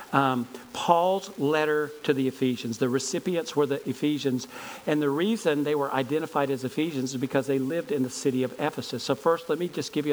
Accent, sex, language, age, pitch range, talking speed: American, male, English, 50-69, 145-180 Hz, 205 wpm